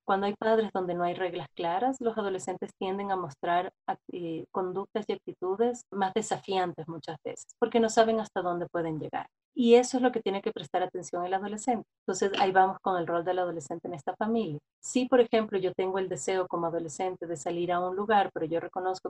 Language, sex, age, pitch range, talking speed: Spanish, female, 30-49, 180-225 Hz, 215 wpm